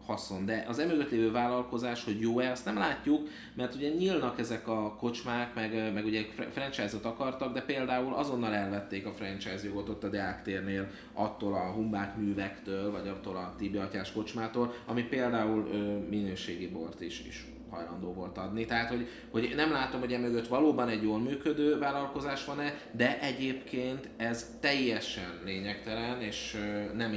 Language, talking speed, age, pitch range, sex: Hungarian, 155 wpm, 30-49, 100-125 Hz, male